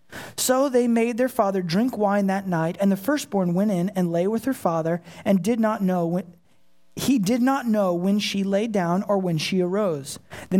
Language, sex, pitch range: English, male, 175-230 Hz